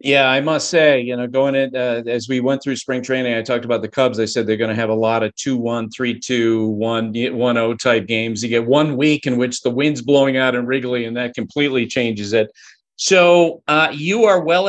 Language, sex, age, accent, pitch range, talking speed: English, male, 40-59, American, 130-180 Hz, 240 wpm